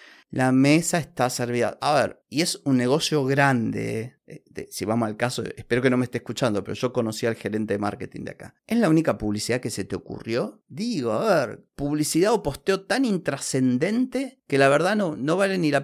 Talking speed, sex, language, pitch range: 210 wpm, male, Spanish, 120-165 Hz